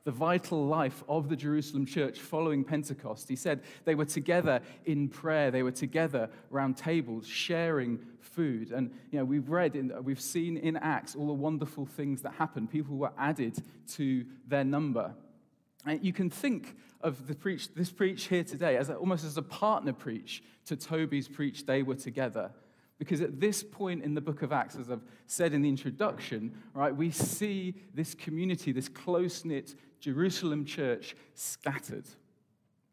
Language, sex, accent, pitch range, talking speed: English, male, British, 135-165 Hz, 175 wpm